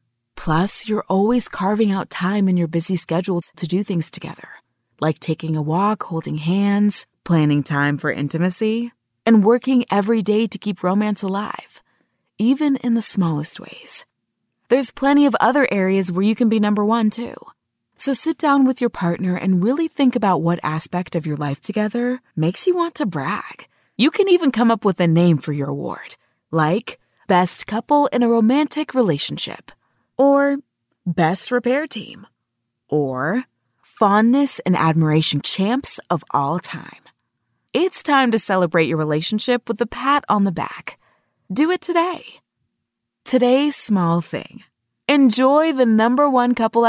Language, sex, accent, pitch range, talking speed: English, female, American, 170-255 Hz, 155 wpm